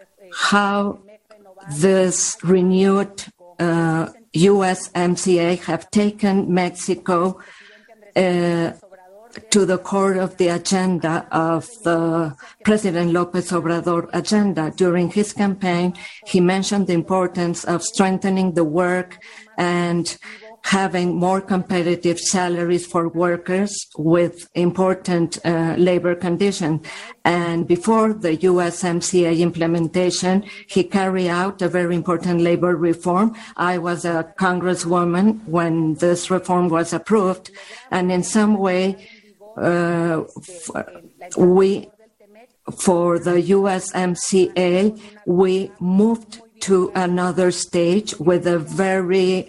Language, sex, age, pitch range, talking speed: English, female, 50-69, 175-195 Hz, 100 wpm